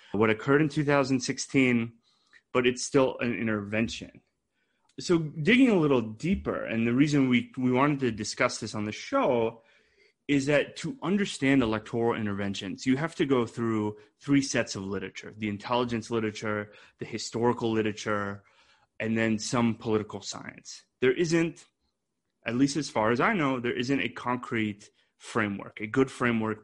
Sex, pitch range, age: male, 110-135 Hz, 30-49